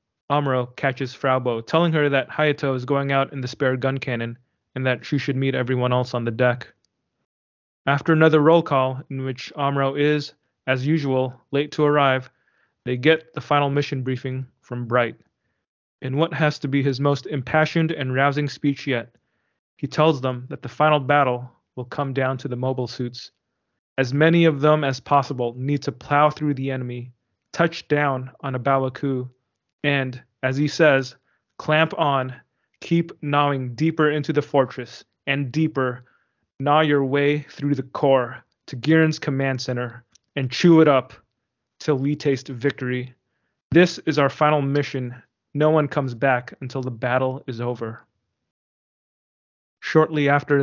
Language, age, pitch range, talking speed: English, 20-39, 125-145 Hz, 160 wpm